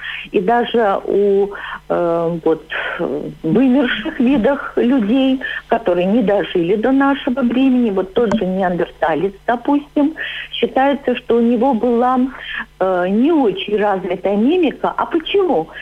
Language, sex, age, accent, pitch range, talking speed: Russian, female, 50-69, native, 200-285 Hz, 115 wpm